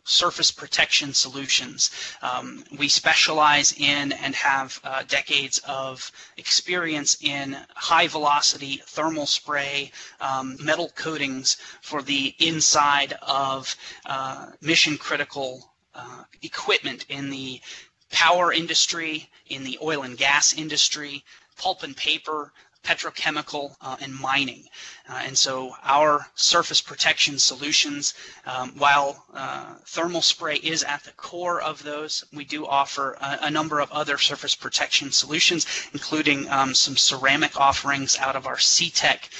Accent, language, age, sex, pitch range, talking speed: American, English, 30-49, male, 140-160 Hz, 125 wpm